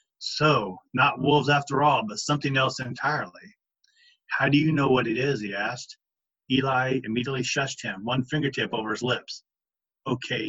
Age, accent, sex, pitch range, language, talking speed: 40-59, American, male, 130-155 Hz, English, 160 wpm